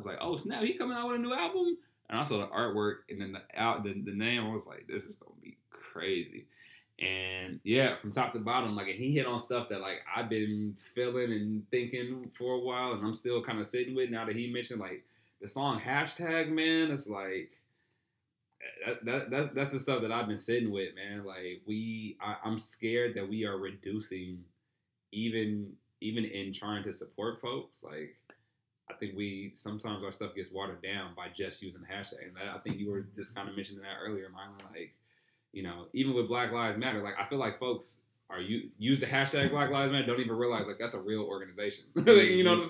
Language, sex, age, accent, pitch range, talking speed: English, male, 20-39, American, 100-130 Hz, 220 wpm